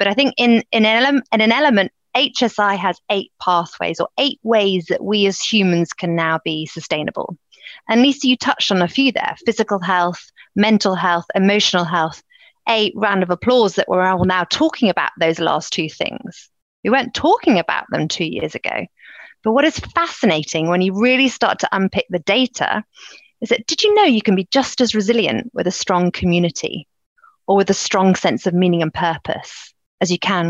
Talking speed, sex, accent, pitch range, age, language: 195 wpm, female, British, 175-240 Hz, 30-49, English